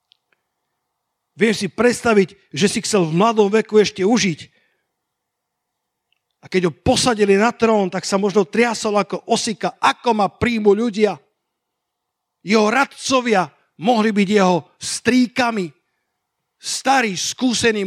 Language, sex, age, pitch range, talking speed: Slovak, male, 50-69, 170-210 Hz, 120 wpm